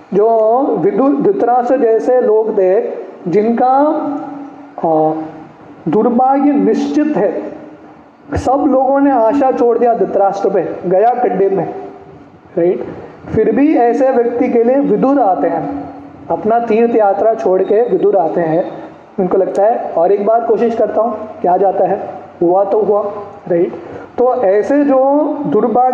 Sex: male